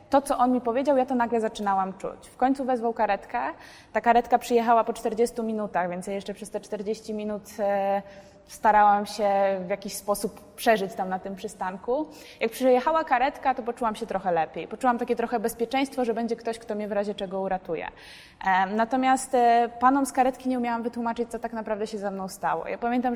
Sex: female